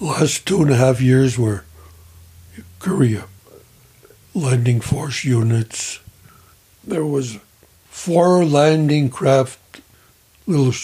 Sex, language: male, English